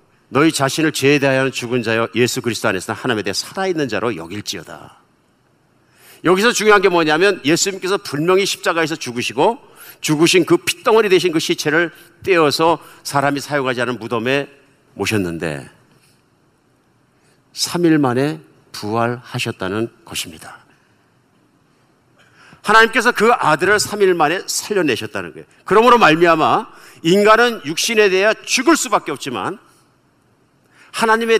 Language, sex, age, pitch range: Korean, male, 50-69, 130-195 Hz